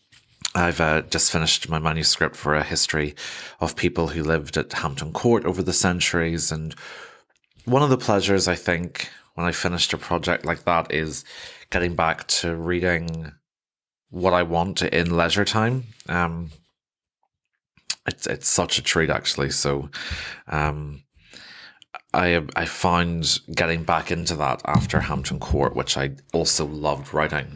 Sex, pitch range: male, 85-105 Hz